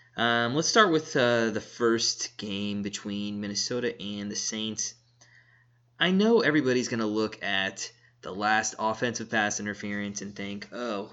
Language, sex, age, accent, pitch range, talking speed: English, male, 20-39, American, 110-130 Hz, 150 wpm